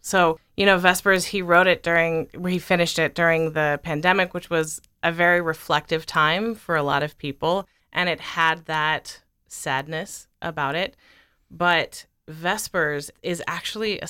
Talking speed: 160 wpm